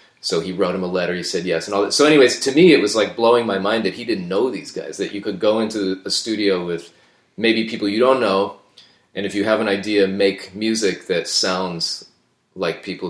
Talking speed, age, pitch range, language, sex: 245 wpm, 30-49, 90-105 Hz, English, male